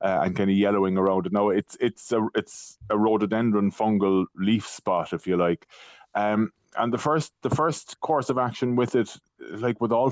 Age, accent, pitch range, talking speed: 30-49, Irish, 100-120 Hz, 200 wpm